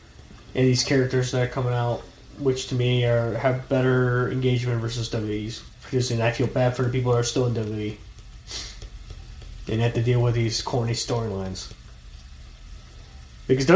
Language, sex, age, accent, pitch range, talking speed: English, male, 20-39, American, 115-140 Hz, 160 wpm